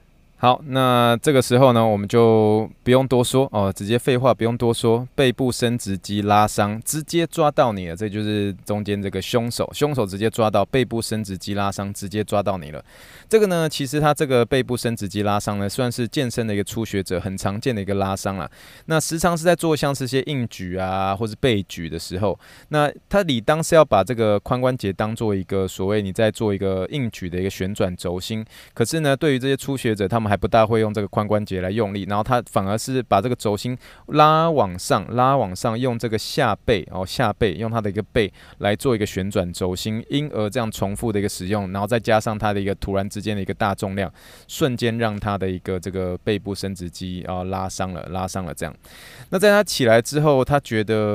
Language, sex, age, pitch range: Chinese, male, 20-39, 100-125 Hz